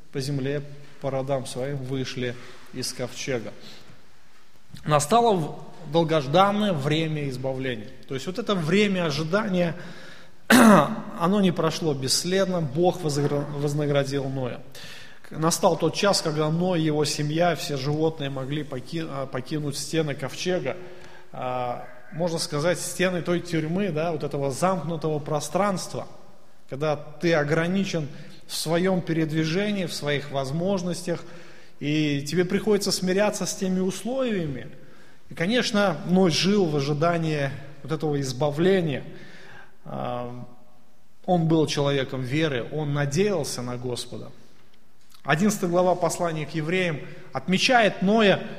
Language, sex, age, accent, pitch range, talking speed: Russian, male, 20-39, native, 145-180 Hz, 110 wpm